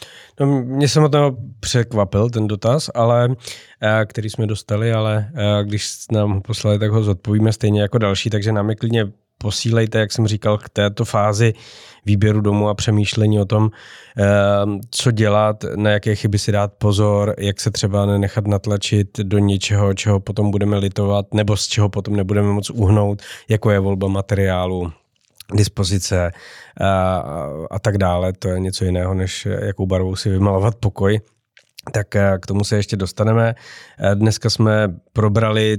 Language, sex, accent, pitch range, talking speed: Czech, male, native, 95-110 Hz, 150 wpm